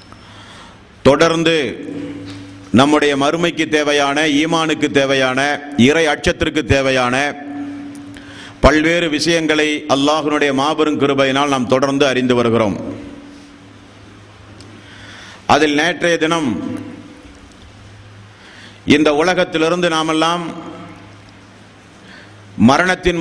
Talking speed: 65 wpm